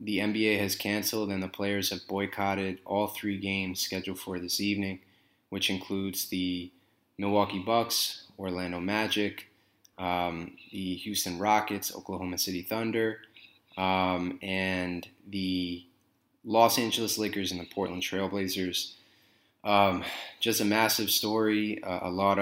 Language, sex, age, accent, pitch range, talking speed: English, male, 20-39, American, 95-105 Hz, 130 wpm